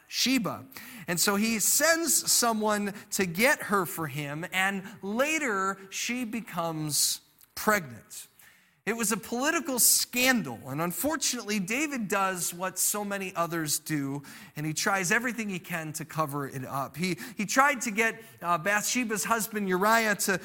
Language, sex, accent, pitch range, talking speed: English, male, American, 175-235 Hz, 145 wpm